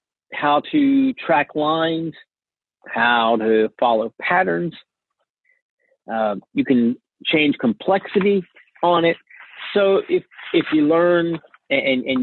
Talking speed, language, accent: 110 wpm, English, American